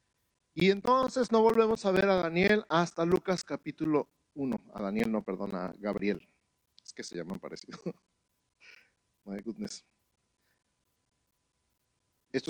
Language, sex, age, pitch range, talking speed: Spanish, male, 50-69, 115-150 Hz, 130 wpm